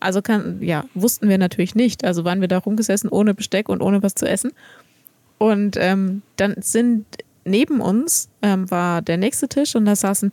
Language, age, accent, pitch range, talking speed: German, 20-39, German, 195-230 Hz, 200 wpm